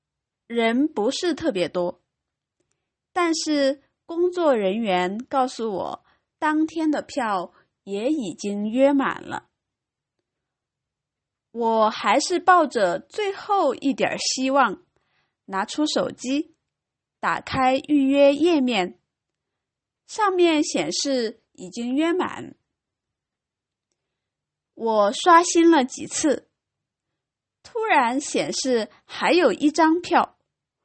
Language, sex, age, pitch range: English, female, 20-39, 230-320 Hz